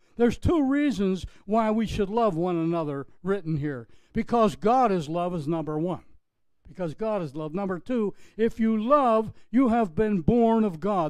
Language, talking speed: English, 180 wpm